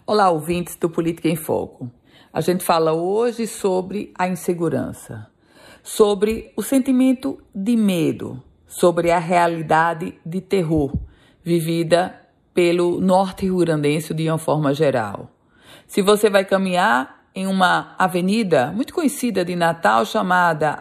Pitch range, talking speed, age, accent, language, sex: 165-215 Hz, 125 wpm, 50-69, Brazilian, Portuguese, female